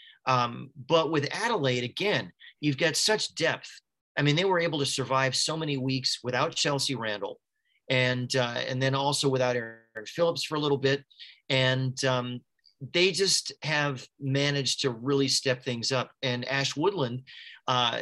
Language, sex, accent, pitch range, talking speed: English, male, American, 130-150 Hz, 165 wpm